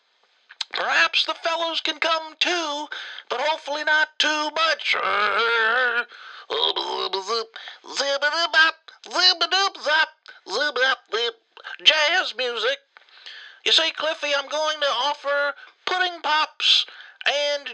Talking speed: 80 wpm